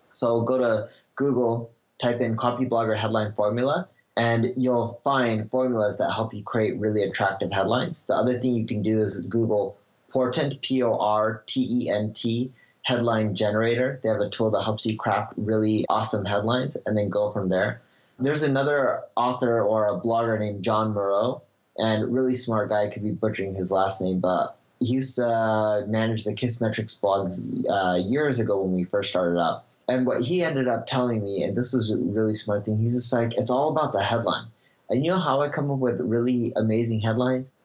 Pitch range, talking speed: 105-130 Hz, 185 wpm